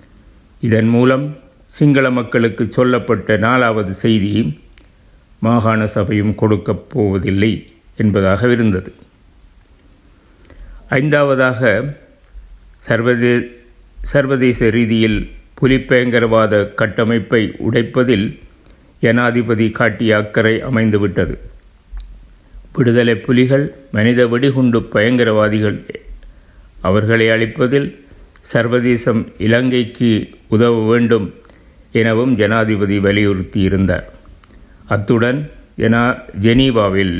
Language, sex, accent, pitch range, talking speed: Tamil, male, native, 105-120 Hz, 70 wpm